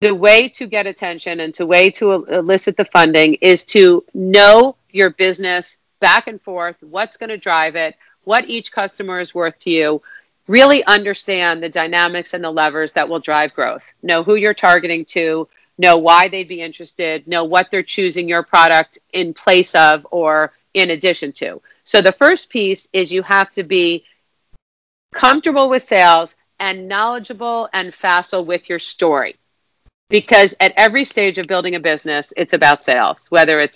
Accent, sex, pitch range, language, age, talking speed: American, female, 170-210 Hz, English, 40-59, 175 wpm